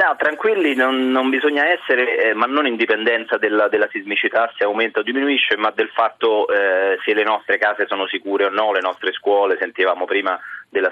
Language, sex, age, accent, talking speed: Italian, male, 30-49, native, 190 wpm